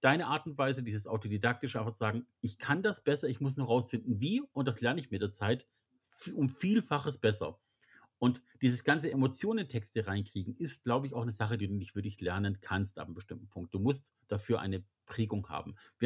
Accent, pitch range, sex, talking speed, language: German, 110-135 Hz, male, 215 wpm, German